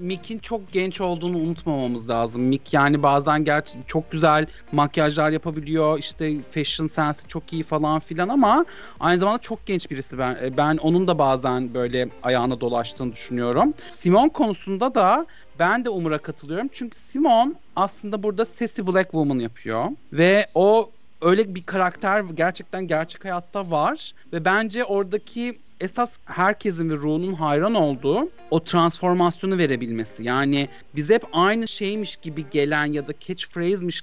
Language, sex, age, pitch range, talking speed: Turkish, male, 40-59, 140-195 Hz, 145 wpm